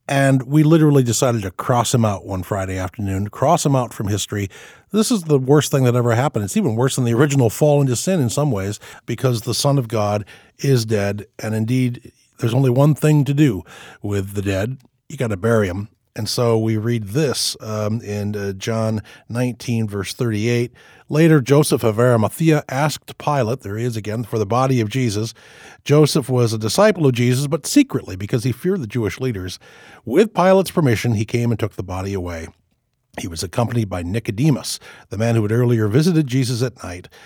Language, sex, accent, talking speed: English, male, American, 200 wpm